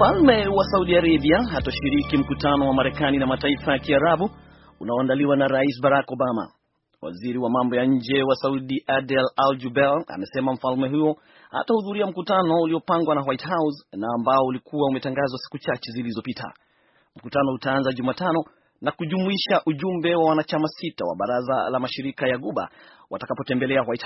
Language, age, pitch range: Swahili, 30-49, 135-160 Hz